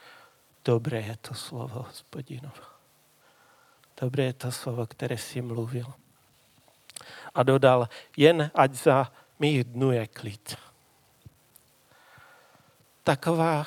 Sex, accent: male, native